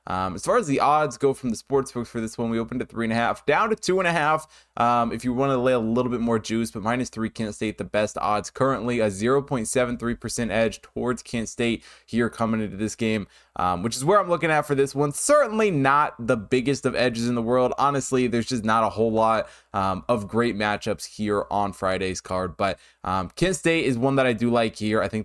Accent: American